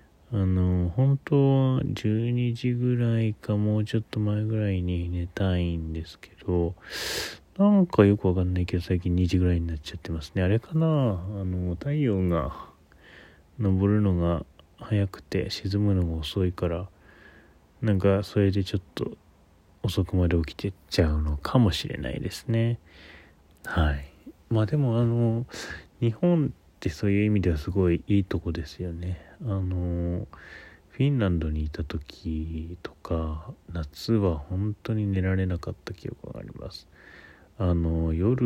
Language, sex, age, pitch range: Japanese, male, 20-39, 80-105 Hz